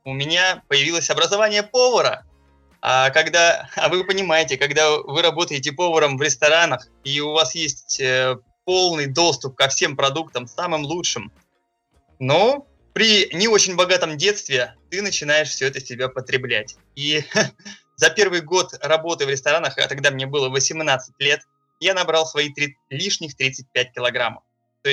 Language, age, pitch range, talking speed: Russian, 20-39, 135-175 Hz, 145 wpm